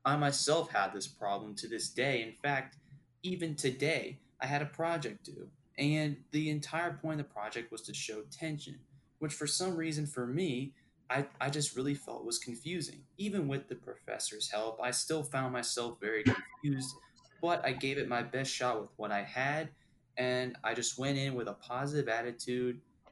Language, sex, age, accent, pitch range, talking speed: English, male, 10-29, American, 120-145 Hz, 185 wpm